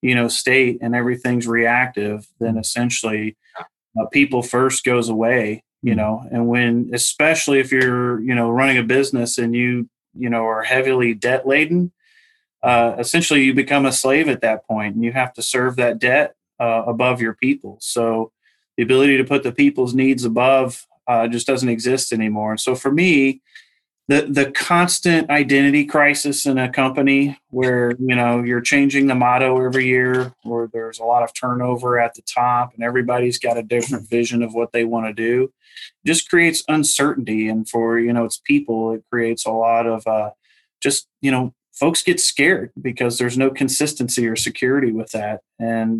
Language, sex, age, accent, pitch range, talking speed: English, male, 30-49, American, 115-135 Hz, 180 wpm